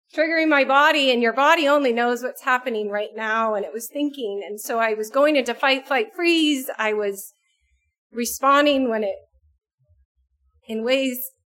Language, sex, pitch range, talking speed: English, female, 205-285 Hz, 165 wpm